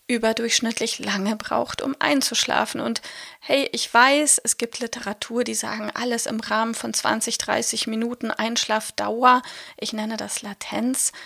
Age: 30-49